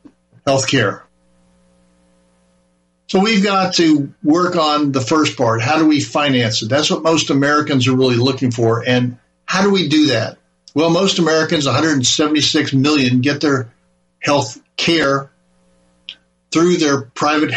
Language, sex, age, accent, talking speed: English, male, 60-79, American, 145 wpm